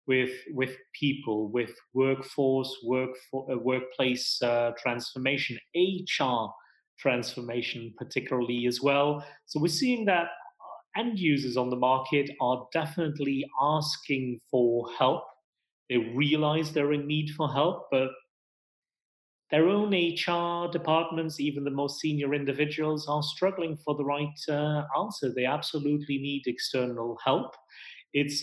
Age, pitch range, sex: 30-49, 125-150 Hz, male